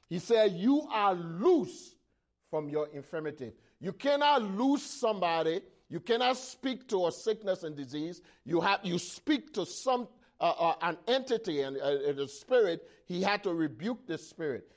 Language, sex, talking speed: English, male, 165 wpm